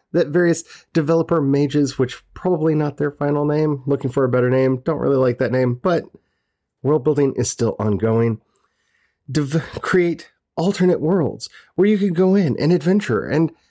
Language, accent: English, American